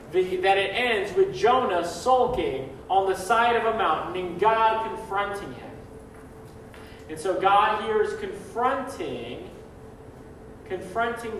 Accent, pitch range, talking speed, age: American, 150-210 Hz, 125 wpm, 30-49